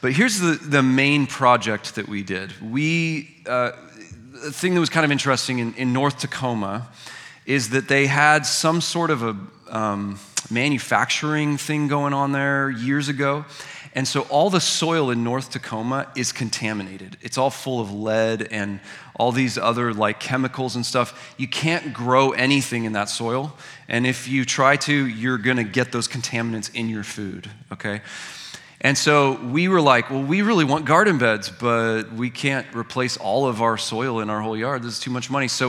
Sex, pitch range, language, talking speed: male, 110-140 Hz, English, 190 wpm